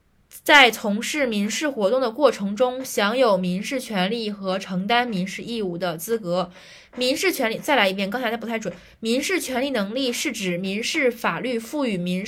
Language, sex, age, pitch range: Chinese, female, 20-39, 195-260 Hz